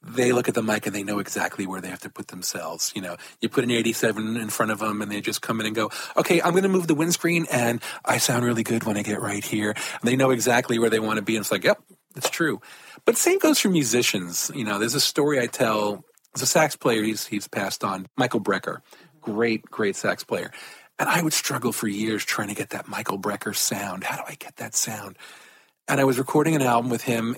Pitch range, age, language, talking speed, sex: 110-150 Hz, 40-59, English, 255 wpm, male